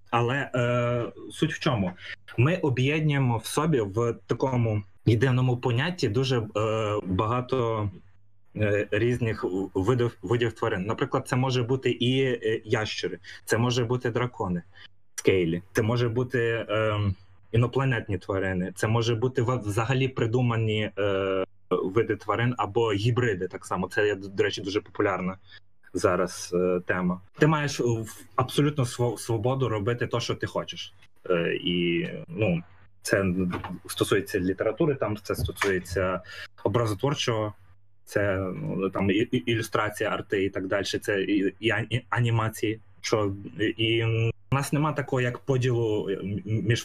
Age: 20-39